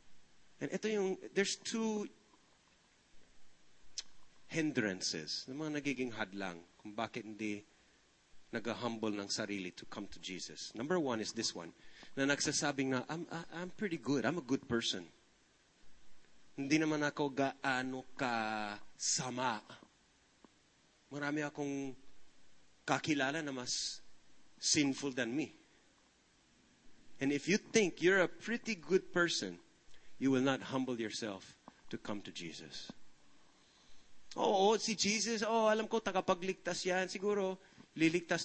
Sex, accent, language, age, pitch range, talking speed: male, Filipino, English, 30-49, 120-170 Hz, 125 wpm